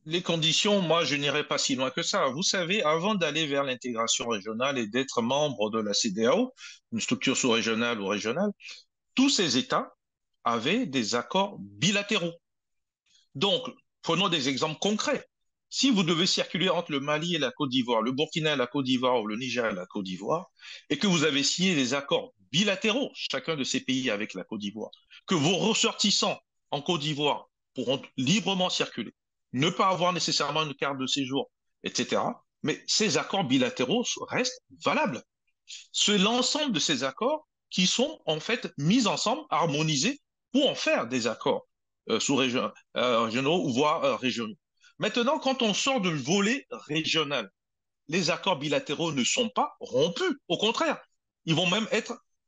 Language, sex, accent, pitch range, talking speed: English, male, French, 145-230 Hz, 170 wpm